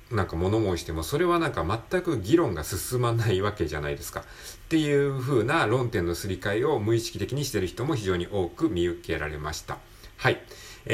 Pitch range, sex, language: 85-135 Hz, male, Japanese